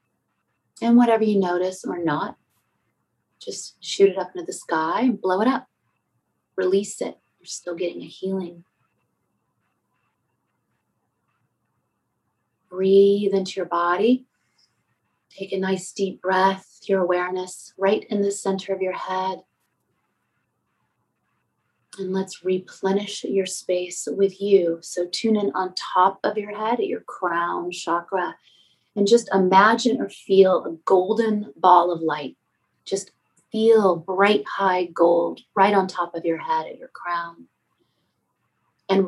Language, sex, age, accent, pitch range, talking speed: English, female, 30-49, American, 175-200 Hz, 130 wpm